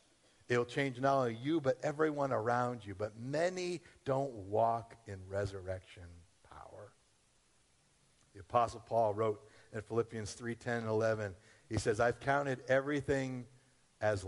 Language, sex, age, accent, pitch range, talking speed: English, male, 50-69, American, 100-130 Hz, 140 wpm